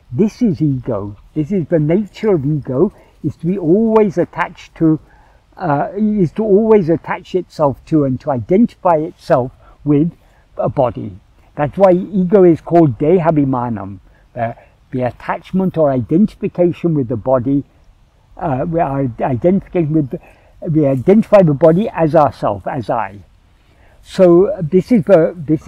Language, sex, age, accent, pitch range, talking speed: English, male, 60-79, British, 130-185 Hz, 145 wpm